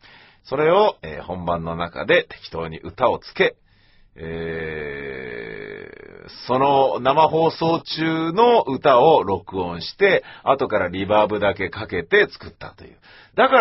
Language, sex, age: Japanese, male, 40-59